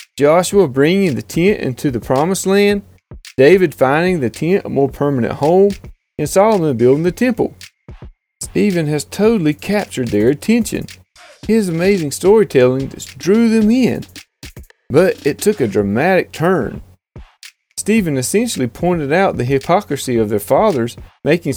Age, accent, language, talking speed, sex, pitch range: 30-49, American, English, 135 wpm, male, 130-195 Hz